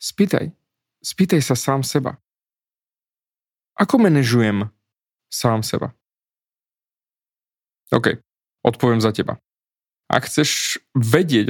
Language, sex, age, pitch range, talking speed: Slovak, male, 30-49, 115-150 Hz, 85 wpm